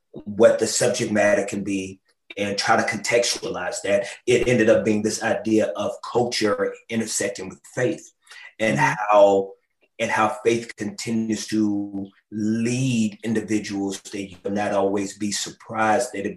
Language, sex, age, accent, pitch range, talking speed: English, male, 30-49, American, 105-120 Hz, 145 wpm